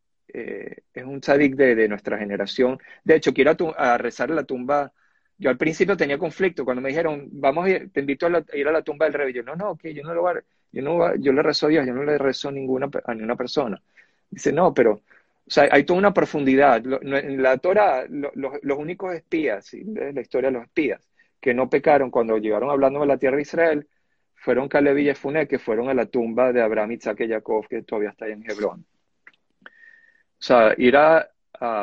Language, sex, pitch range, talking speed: Spanish, male, 120-150 Hz, 230 wpm